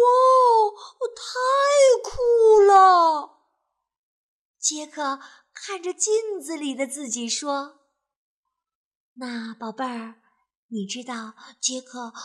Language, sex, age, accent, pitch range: Chinese, female, 30-49, native, 245-380 Hz